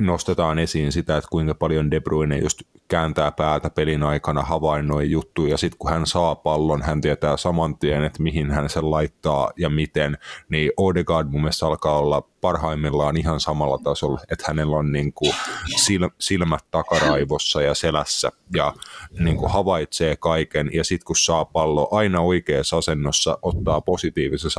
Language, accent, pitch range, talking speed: Finnish, native, 75-85 Hz, 160 wpm